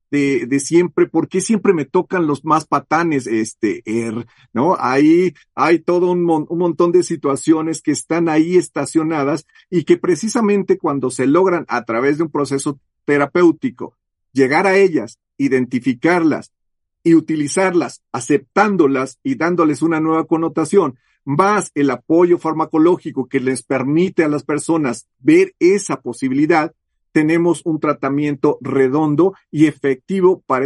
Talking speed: 135 wpm